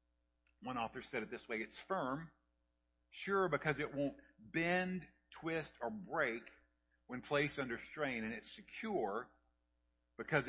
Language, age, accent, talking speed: English, 50-69, American, 135 wpm